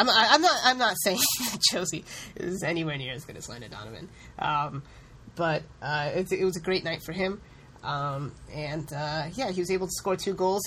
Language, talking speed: English, 210 wpm